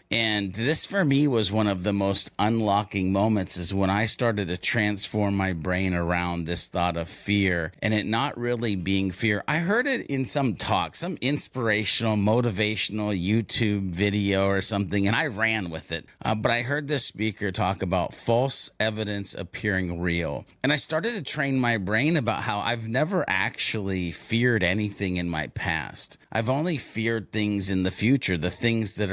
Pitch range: 100-125 Hz